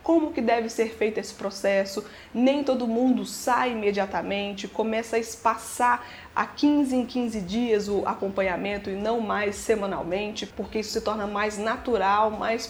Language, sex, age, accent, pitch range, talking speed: Portuguese, female, 20-39, Brazilian, 210-255 Hz, 155 wpm